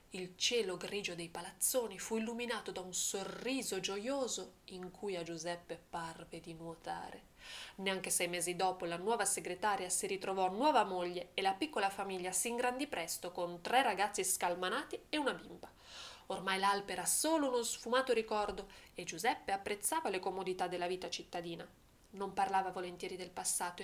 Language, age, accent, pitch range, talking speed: Italian, 20-39, native, 185-245 Hz, 160 wpm